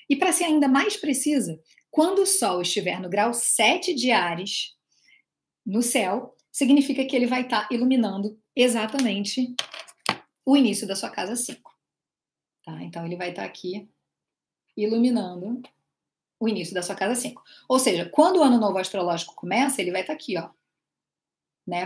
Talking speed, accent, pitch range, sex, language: 165 wpm, Brazilian, 190-260 Hz, female, Portuguese